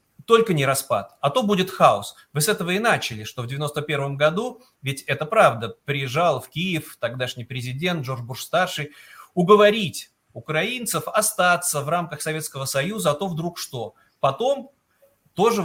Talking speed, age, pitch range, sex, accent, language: 150 wpm, 30-49, 135-190 Hz, male, native, Russian